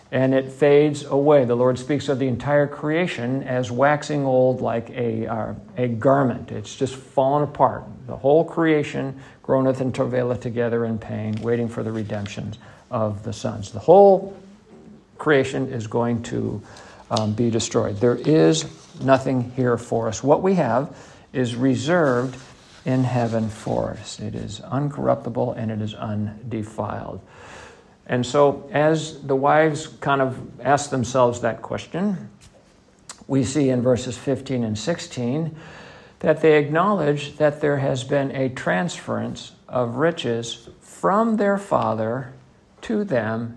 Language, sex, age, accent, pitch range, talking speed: English, male, 50-69, American, 120-145 Hz, 145 wpm